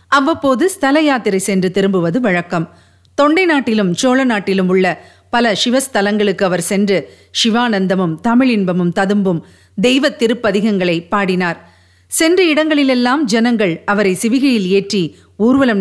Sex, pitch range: female, 190-280 Hz